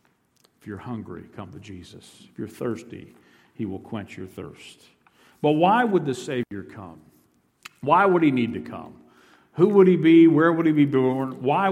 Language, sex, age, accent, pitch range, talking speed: English, male, 50-69, American, 125-170 Hz, 185 wpm